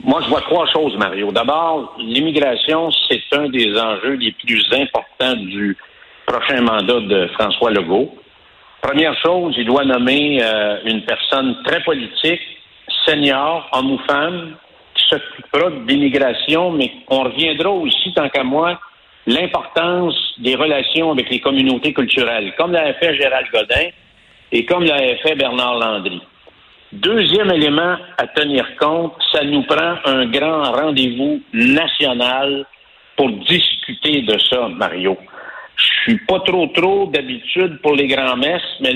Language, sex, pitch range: French, male, 130-175 Hz